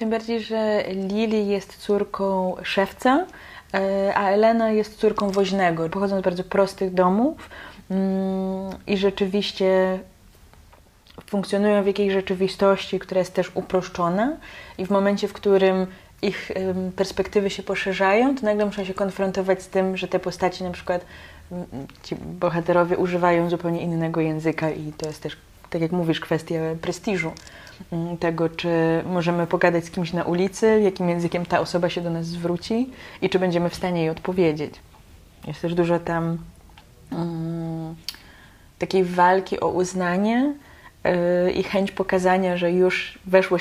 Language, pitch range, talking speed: Polish, 170-195 Hz, 140 wpm